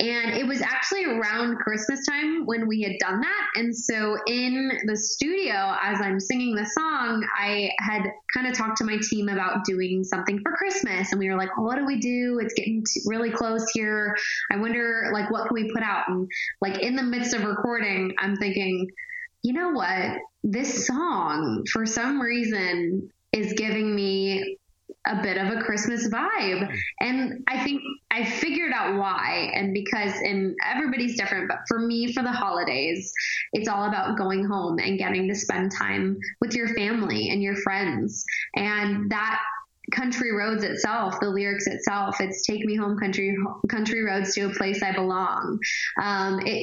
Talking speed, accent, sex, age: 175 wpm, American, female, 20-39